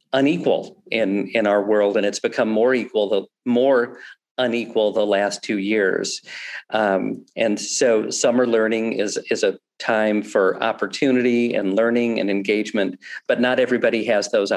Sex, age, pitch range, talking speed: male, 50-69, 105-135 Hz, 150 wpm